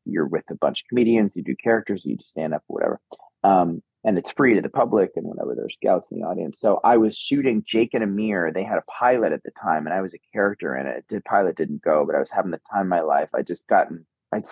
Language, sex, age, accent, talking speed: English, male, 30-49, American, 275 wpm